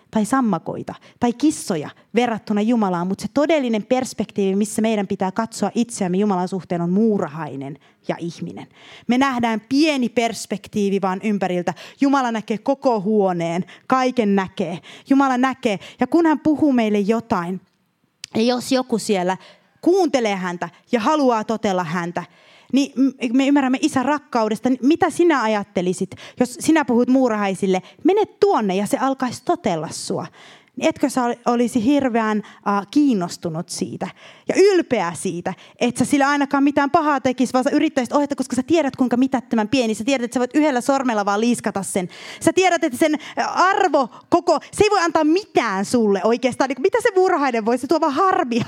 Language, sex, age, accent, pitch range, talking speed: Finnish, female, 30-49, native, 205-285 Hz, 155 wpm